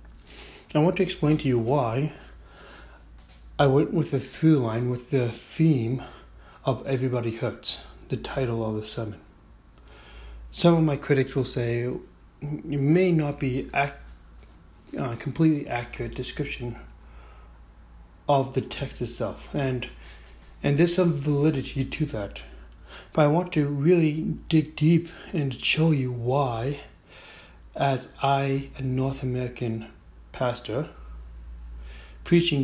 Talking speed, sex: 125 wpm, male